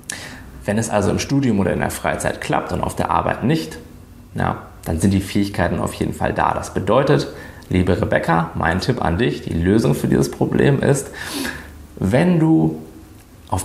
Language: German